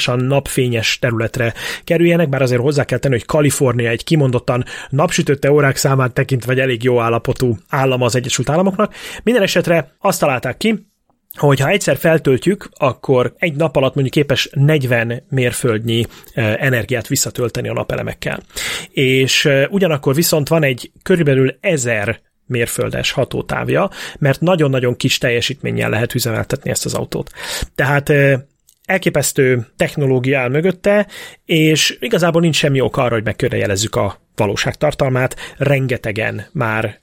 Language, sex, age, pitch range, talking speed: Hungarian, male, 30-49, 125-160 Hz, 130 wpm